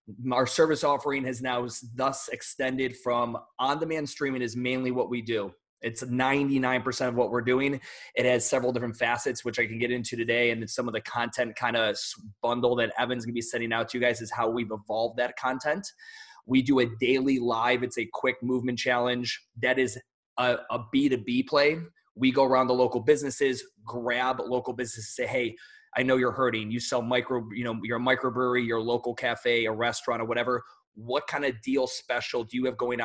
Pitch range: 120-130 Hz